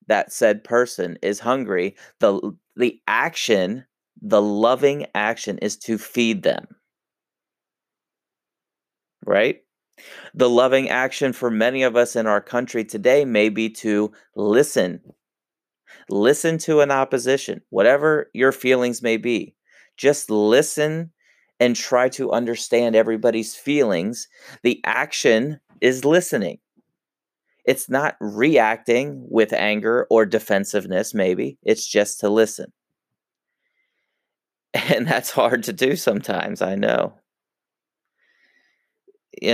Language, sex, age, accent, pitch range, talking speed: English, male, 30-49, American, 105-130 Hz, 110 wpm